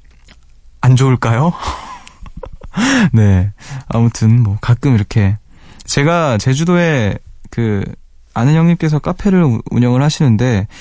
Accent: native